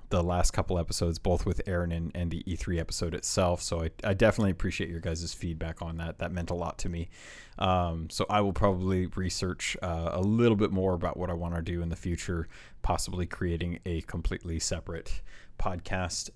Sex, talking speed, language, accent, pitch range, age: male, 200 wpm, English, American, 85-105 Hz, 30-49